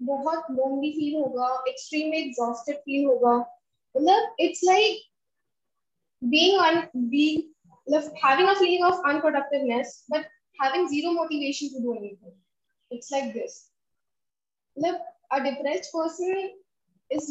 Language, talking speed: Hindi, 105 wpm